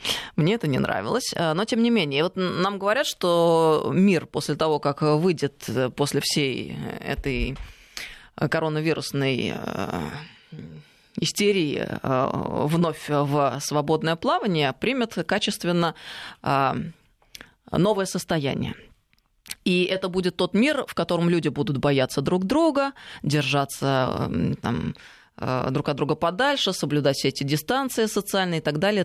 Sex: female